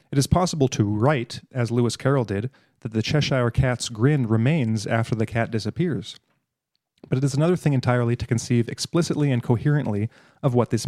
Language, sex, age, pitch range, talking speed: English, male, 30-49, 115-140 Hz, 180 wpm